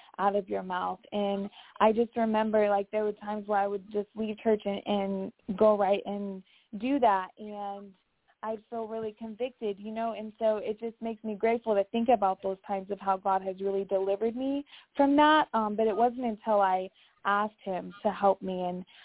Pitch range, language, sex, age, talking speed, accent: 190-215 Hz, English, female, 20-39, 210 wpm, American